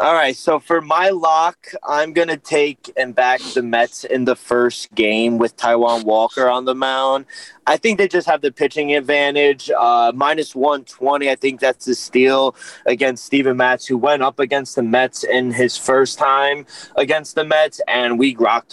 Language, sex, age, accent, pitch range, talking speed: English, male, 20-39, American, 130-165 Hz, 190 wpm